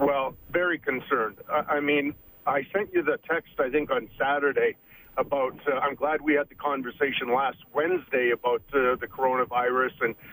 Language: English